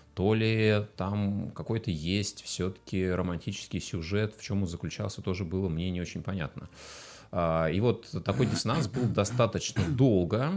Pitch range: 85-115 Hz